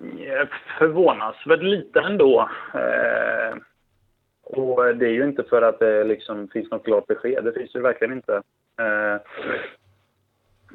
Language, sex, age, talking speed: Swedish, male, 20-39, 135 wpm